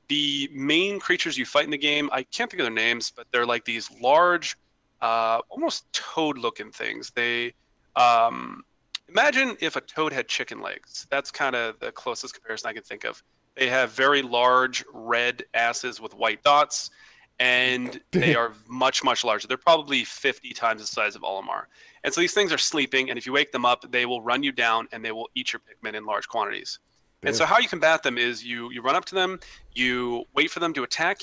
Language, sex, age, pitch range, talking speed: English, male, 30-49, 120-150 Hz, 210 wpm